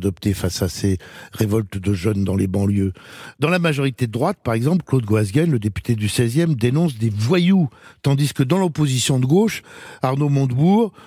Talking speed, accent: 185 wpm, French